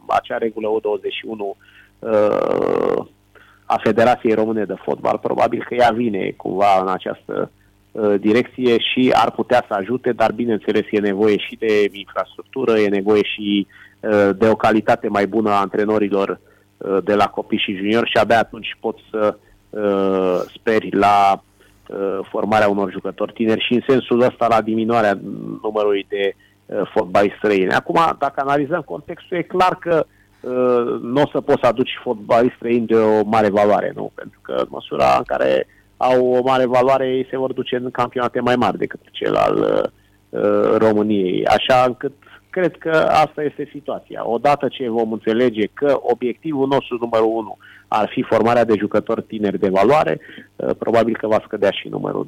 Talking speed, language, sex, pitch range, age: 160 wpm, Romanian, male, 105-125 Hz, 30-49